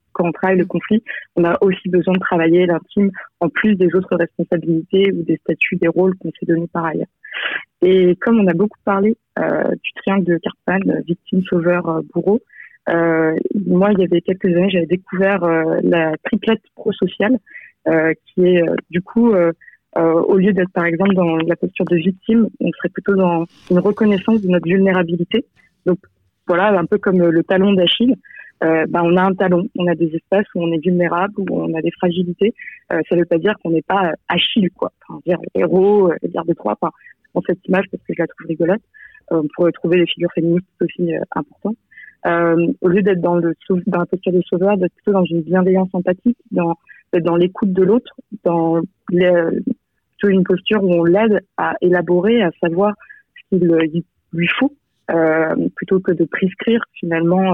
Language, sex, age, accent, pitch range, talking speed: French, female, 20-39, French, 170-195 Hz, 200 wpm